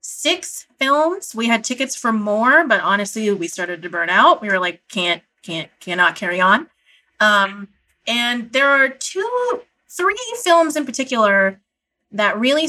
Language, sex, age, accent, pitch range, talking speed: English, female, 20-39, American, 200-260 Hz, 155 wpm